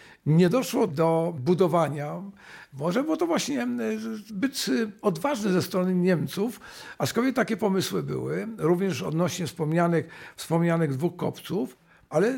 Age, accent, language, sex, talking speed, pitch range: 50-69, native, Polish, male, 115 wpm, 160-195 Hz